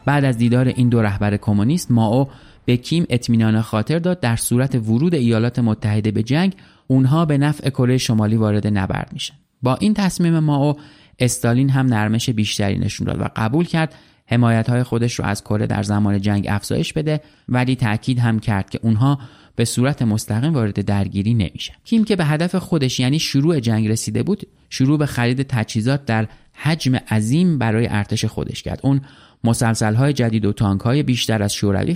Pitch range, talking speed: 105-140 Hz, 180 wpm